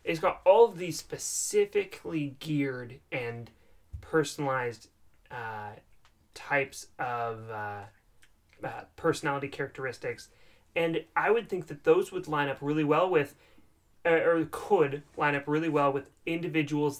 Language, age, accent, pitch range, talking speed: English, 30-49, American, 135-160 Hz, 125 wpm